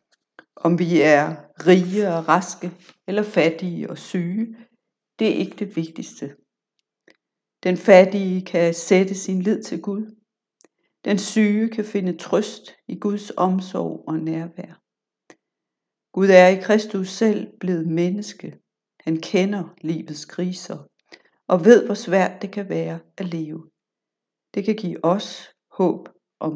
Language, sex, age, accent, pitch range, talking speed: Danish, female, 60-79, native, 170-210 Hz, 135 wpm